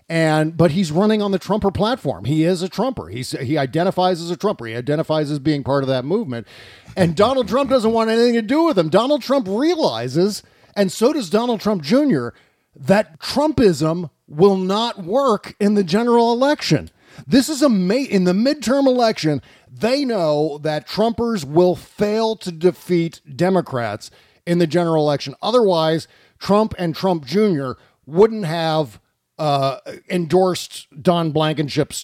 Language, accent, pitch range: English, American, 140-210 Hz